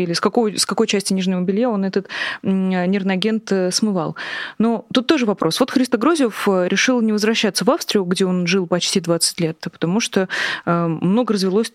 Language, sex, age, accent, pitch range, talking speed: Russian, female, 20-39, native, 180-225 Hz, 175 wpm